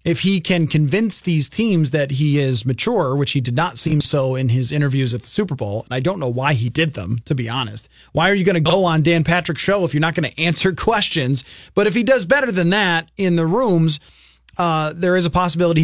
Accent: American